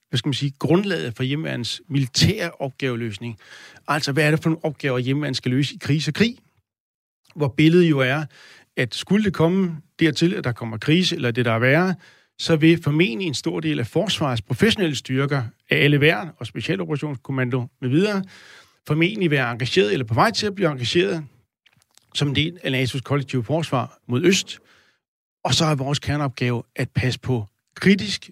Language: Danish